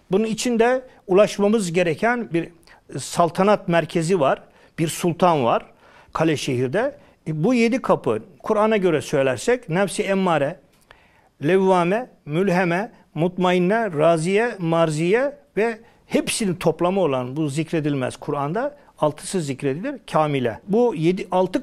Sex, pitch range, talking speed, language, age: male, 165-220 Hz, 105 wpm, Turkish, 60-79